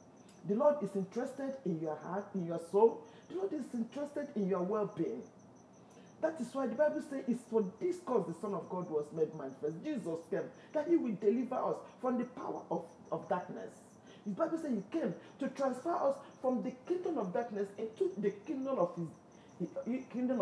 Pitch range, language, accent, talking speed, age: 190-270 Hz, English, Nigerian, 185 wpm, 40-59